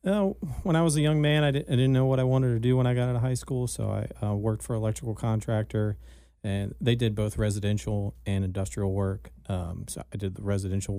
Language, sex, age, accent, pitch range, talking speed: English, male, 40-59, American, 95-105 Hz, 240 wpm